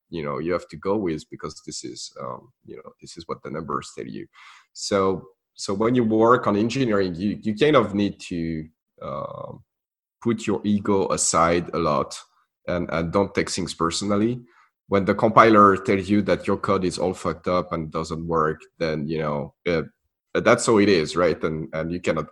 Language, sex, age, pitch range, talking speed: English, male, 30-49, 85-110 Hz, 200 wpm